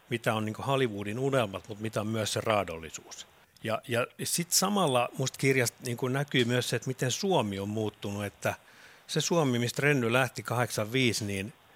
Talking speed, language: 175 wpm, Finnish